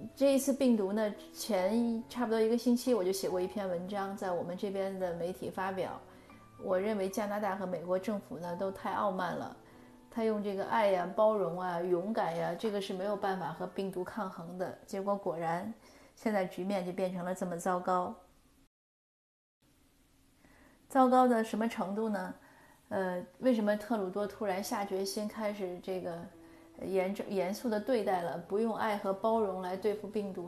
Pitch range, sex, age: 185-220 Hz, female, 30-49